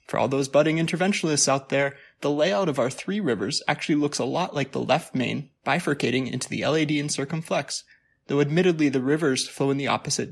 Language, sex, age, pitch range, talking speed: English, male, 20-39, 135-180 Hz, 205 wpm